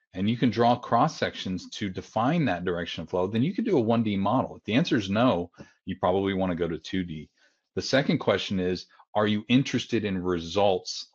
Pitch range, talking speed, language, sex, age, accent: 90-105 Hz, 210 wpm, English, male, 40-59, American